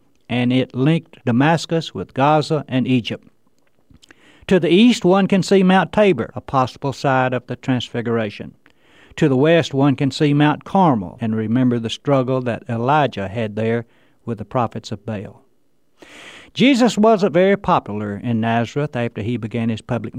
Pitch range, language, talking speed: 115-155 Hz, English, 160 wpm